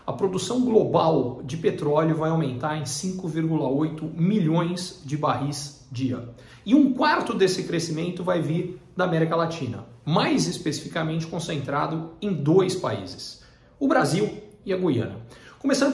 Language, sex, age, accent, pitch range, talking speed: Portuguese, male, 40-59, Brazilian, 140-185 Hz, 130 wpm